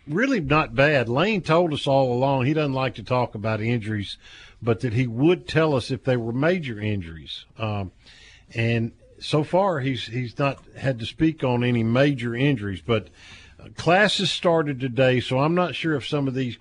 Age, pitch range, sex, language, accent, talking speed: 50-69, 110-135 Hz, male, English, American, 190 wpm